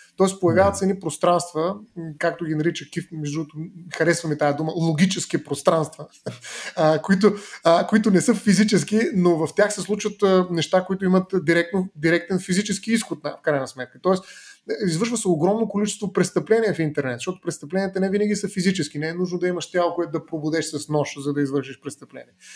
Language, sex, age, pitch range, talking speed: Bulgarian, male, 30-49, 155-190 Hz, 170 wpm